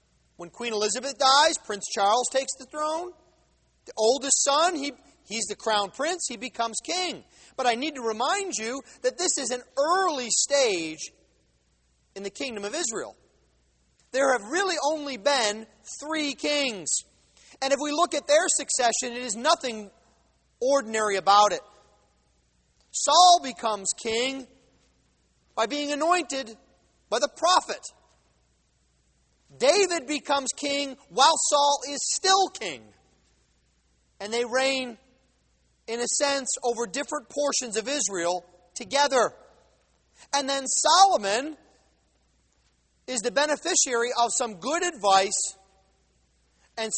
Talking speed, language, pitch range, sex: 125 wpm, English, 205-295 Hz, male